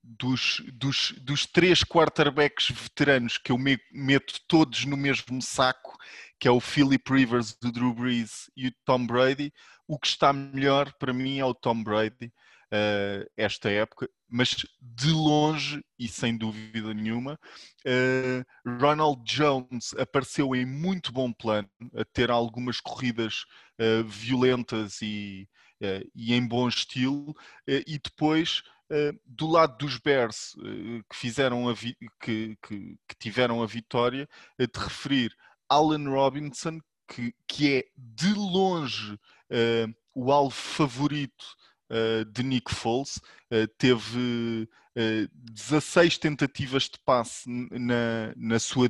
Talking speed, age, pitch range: 130 wpm, 20-39, 115-140 Hz